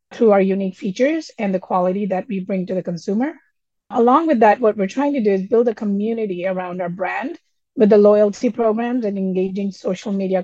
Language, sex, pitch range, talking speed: English, female, 195-250 Hz, 205 wpm